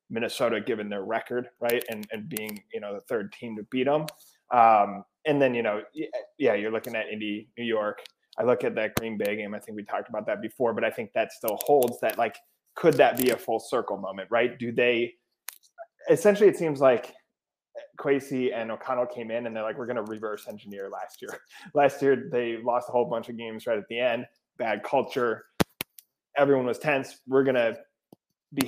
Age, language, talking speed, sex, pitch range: 20-39, English, 210 wpm, male, 110-135 Hz